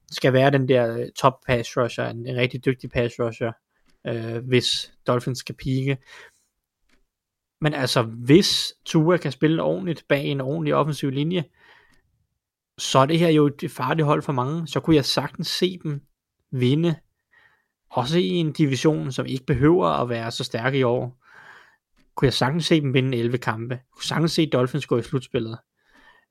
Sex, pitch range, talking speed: male, 120-150 Hz, 170 wpm